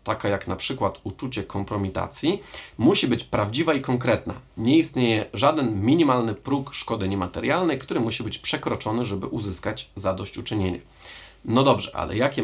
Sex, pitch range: male, 100-130 Hz